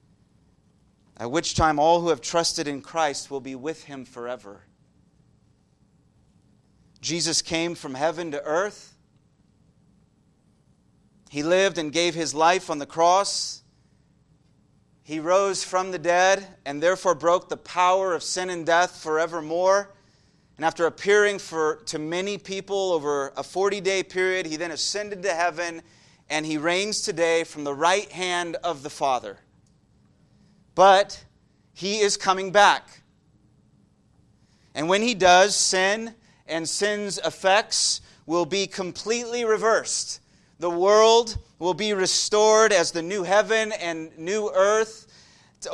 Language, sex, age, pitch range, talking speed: English, male, 30-49, 165-200 Hz, 135 wpm